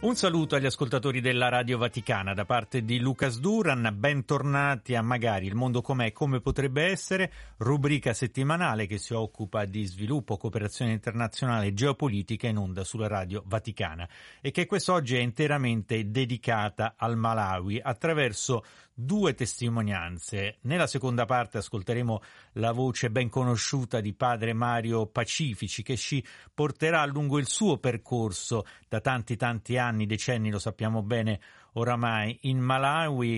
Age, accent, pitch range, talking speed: 40-59, native, 110-135 Hz, 140 wpm